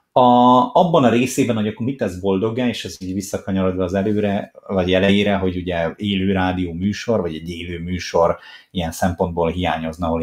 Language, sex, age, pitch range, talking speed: Hungarian, male, 30-49, 85-105 Hz, 175 wpm